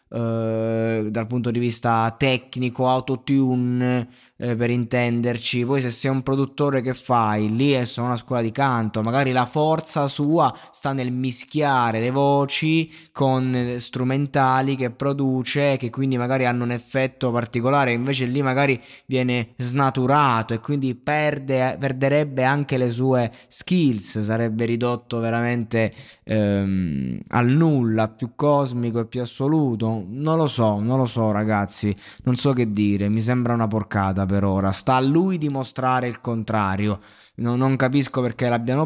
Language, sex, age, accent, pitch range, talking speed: Italian, male, 20-39, native, 115-140 Hz, 140 wpm